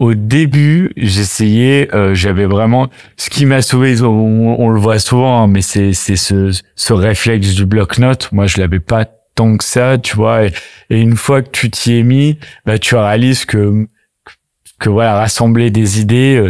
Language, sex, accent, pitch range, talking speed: French, male, French, 105-125 Hz, 185 wpm